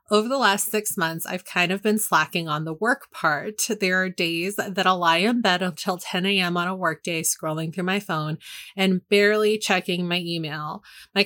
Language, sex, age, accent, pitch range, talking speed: English, female, 30-49, American, 170-200 Hz, 195 wpm